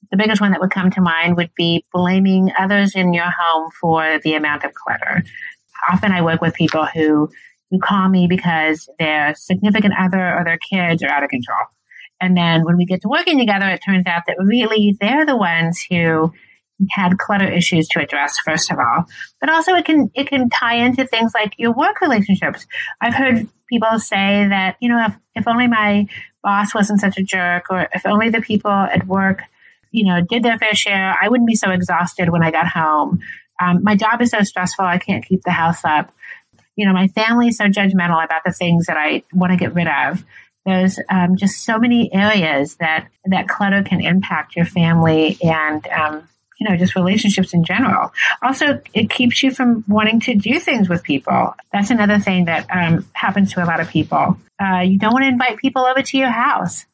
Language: English